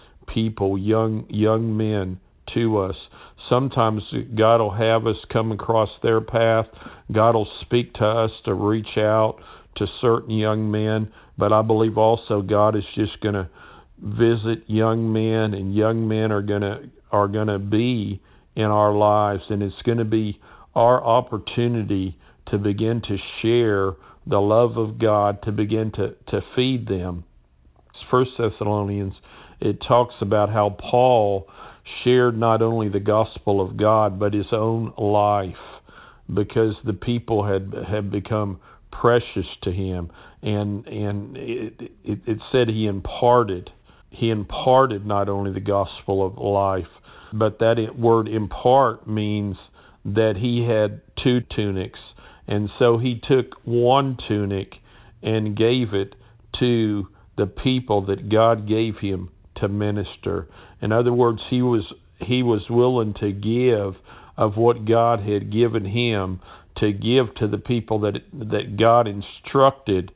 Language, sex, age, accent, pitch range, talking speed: English, male, 50-69, American, 100-115 Hz, 145 wpm